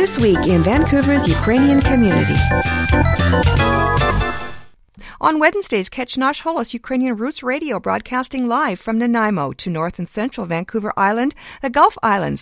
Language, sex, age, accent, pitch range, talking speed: English, female, 50-69, American, 185-265 Hz, 125 wpm